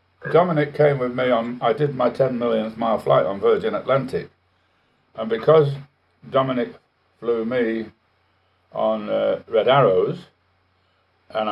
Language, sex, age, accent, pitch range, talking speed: English, male, 60-79, British, 110-160 Hz, 130 wpm